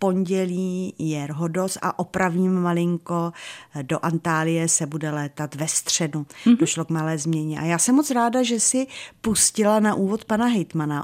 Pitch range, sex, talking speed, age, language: 155-185 Hz, female, 160 wpm, 30-49, Czech